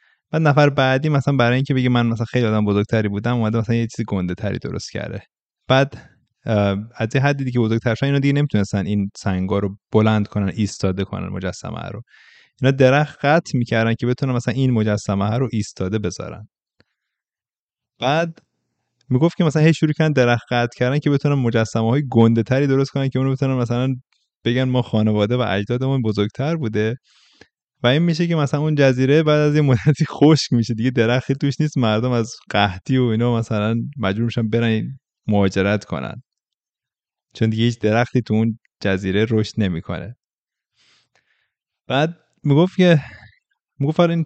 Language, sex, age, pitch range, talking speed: Persian, male, 20-39, 110-140 Hz, 160 wpm